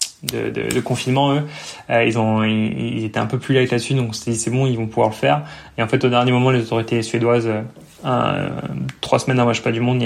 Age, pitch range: 20-39, 115-130 Hz